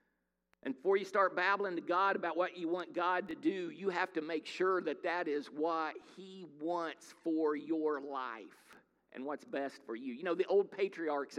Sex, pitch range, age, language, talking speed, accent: male, 155-200 Hz, 50-69, English, 200 wpm, American